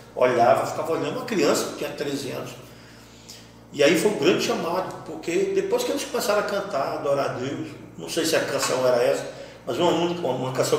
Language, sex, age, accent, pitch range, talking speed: Portuguese, male, 40-59, Brazilian, 135-205 Hz, 210 wpm